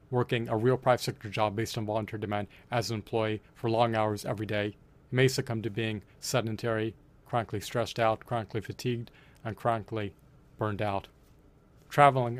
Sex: male